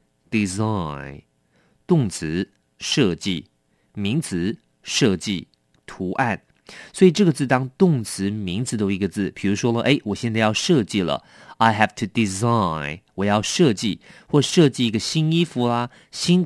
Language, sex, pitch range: English, male, 90-130 Hz